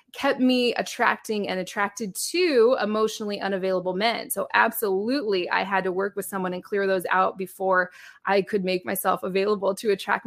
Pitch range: 190-240 Hz